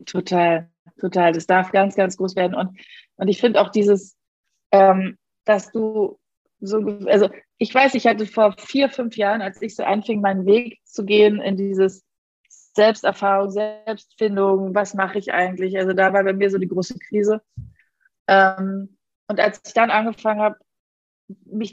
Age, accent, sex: 30-49, German, female